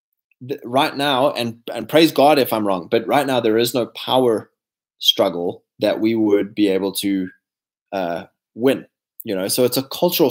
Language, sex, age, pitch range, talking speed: English, male, 20-39, 120-160 Hz, 180 wpm